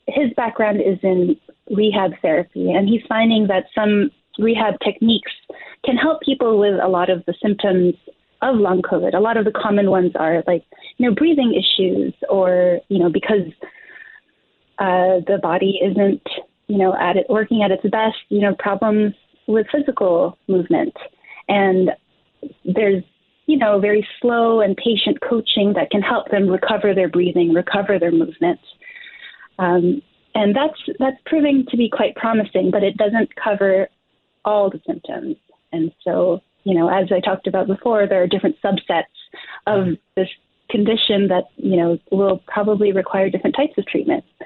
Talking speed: 160 wpm